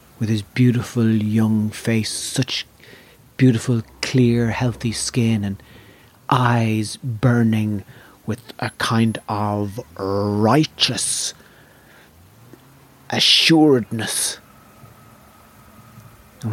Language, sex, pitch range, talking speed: English, male, 110-125 Hz, 75 wpm